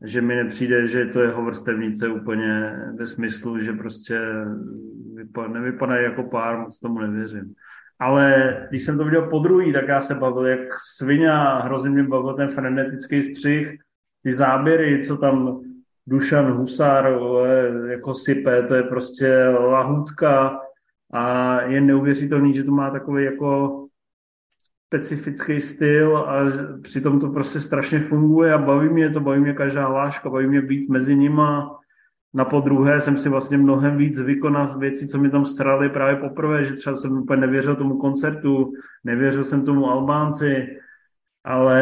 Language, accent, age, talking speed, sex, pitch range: Czech, native, 30-49, 150 wpm, male, 130-145 Hz